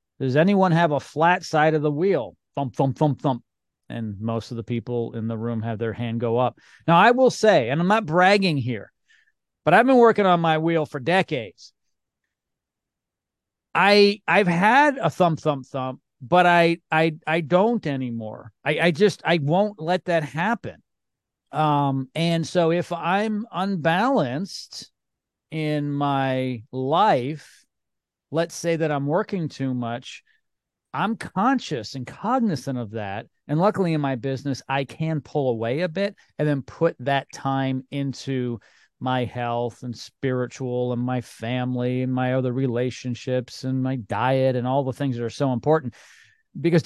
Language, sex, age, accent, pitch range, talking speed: English, male, 40-59, American, 125-170 Hz, 165 wpm